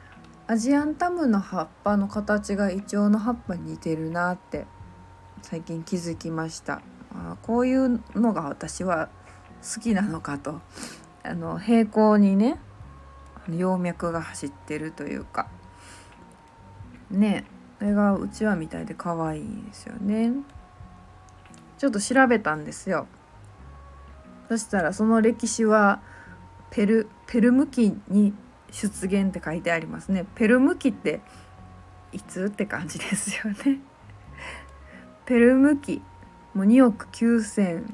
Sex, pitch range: female, 145-235 Hz